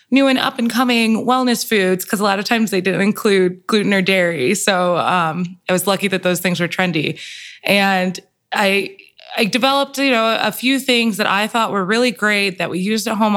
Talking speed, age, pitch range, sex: 215 wpm, 20-39, 180-230 Hz, female